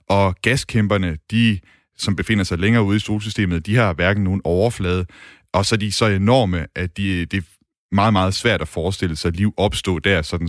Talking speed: 205 wpm